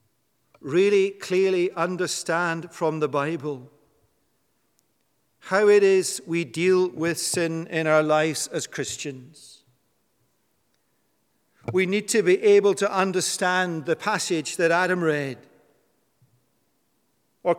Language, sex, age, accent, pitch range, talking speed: English, male, 50-69, British, 140-175 Hz, 105 wpm